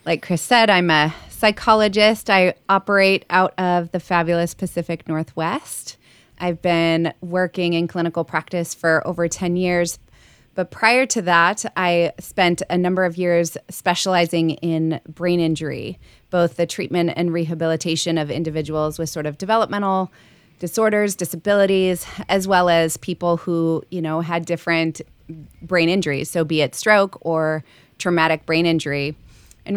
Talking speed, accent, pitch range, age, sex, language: 145 wpm, American, 160-185 Hz, 20-39, female, English